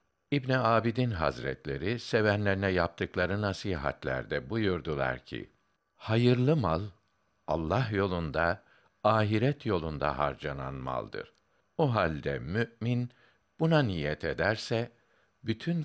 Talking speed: 85 wpm